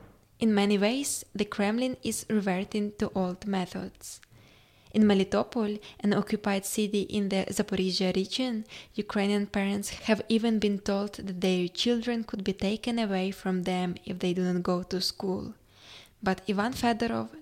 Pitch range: 190-220 Hz